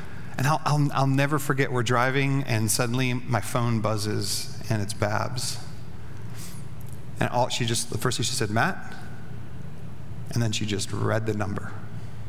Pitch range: 120-160 Hz